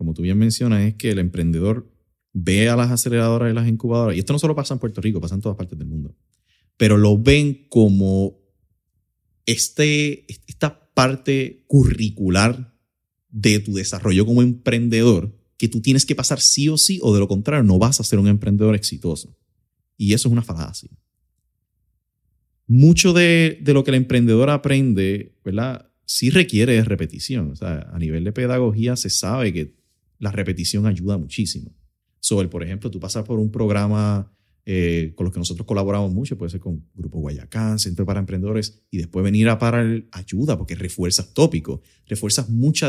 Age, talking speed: 30-49, 175 wpm